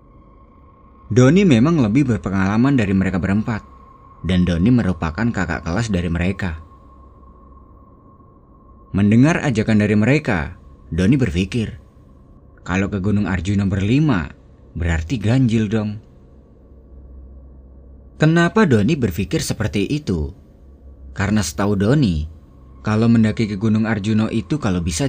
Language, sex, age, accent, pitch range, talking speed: Indonesian, male, 30-49, native, 75-110 Hz, 105 wpm